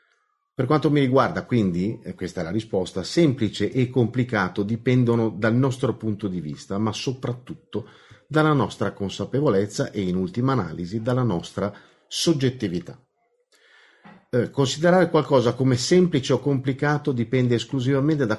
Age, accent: 40-59, native